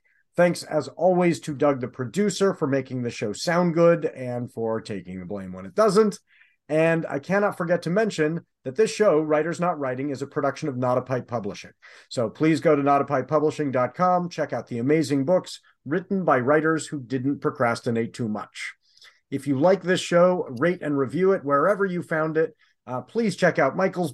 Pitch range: 130-170 Hz